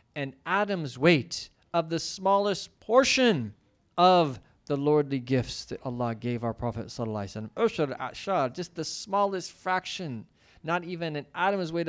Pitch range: 130-195 Hz